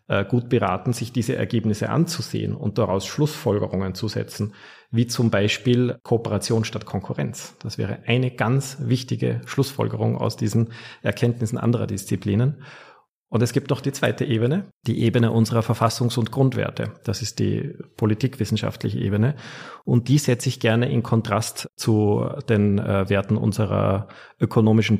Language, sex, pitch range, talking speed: German, male, 100-120 Hz, 140 wpm